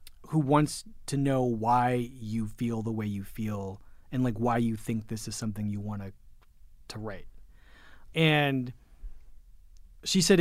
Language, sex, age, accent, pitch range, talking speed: English, male, 30-49, American, 115-165 Hz, 150 wpm